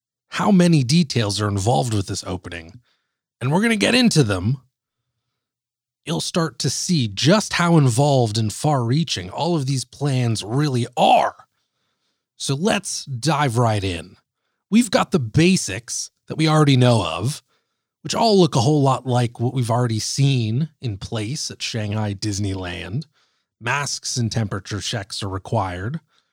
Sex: male